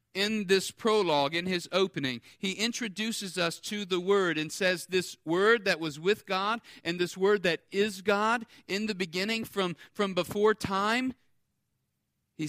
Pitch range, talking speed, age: 145-205 Hz, 165 wpm, 40-59